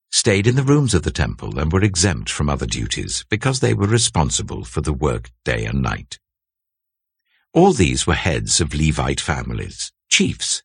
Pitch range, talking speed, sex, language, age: 80-115 Hz, 175 wpm, male, English, 60-79